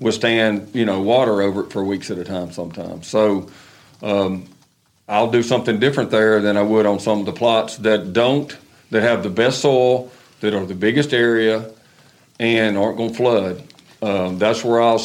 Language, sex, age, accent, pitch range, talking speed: English, male, 50-69, American, 100-120 Hz, 190 wpm